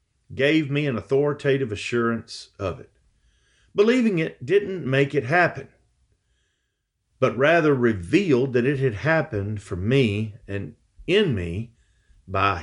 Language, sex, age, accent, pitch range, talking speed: English, male, 50-69, American, 100-145 Hz, 125 wpm